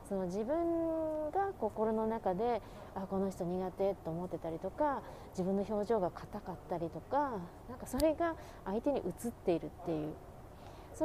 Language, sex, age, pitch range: Japanese, female, 20-39, 175-230 Hz